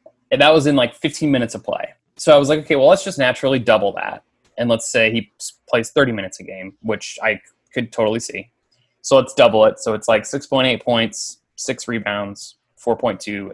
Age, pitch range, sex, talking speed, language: 20-39, 105-140 Hz, male, 205 wpm, English